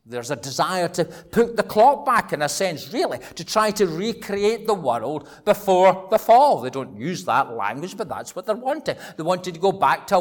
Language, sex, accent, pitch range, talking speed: English, male, British, 155-215 Hz, 225 wpm